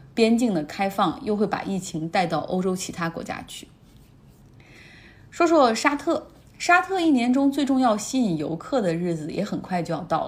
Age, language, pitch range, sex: 30-49, Chinese, 170-230 Hz, female